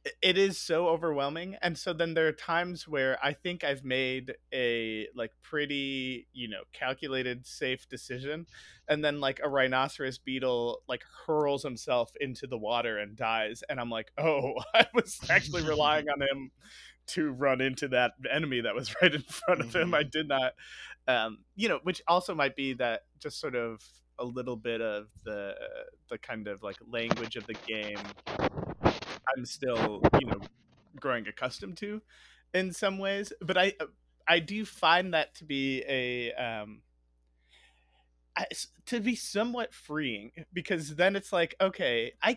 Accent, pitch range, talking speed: American, 125-185 Hz, 165 wpm